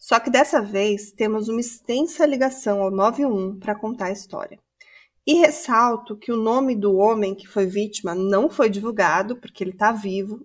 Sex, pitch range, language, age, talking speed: female, 205-280 Hz, Portuguese, 30-49, 180 wpm